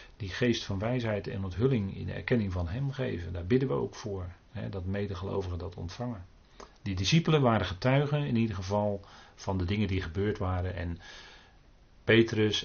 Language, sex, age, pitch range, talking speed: Dutch, male, 40-59, 95-125 Hz, 175 wpm